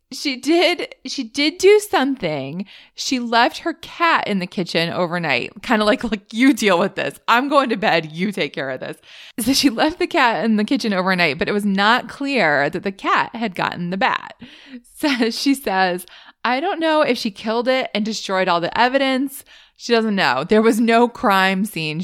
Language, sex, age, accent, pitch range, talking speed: English, female, 20-39, American, 190-265 Hz, 205 wpm